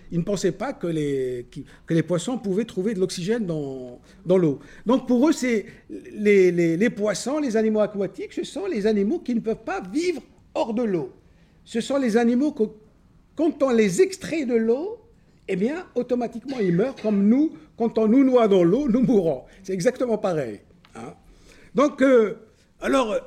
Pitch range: 180-270 Hz